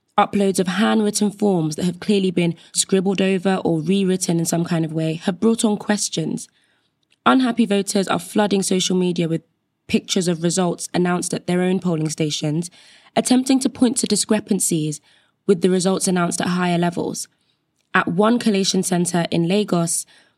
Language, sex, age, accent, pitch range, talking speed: English, female, 20-39, British, 175-210 Hz, 160 wpm